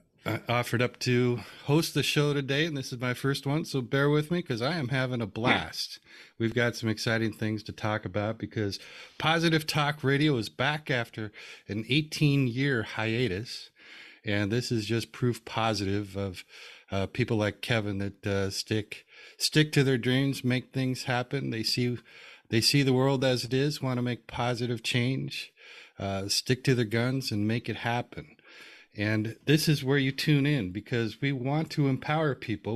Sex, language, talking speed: male, English, 180 wpm